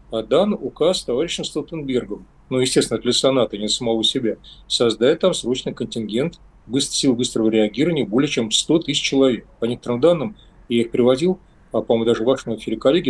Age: 40-59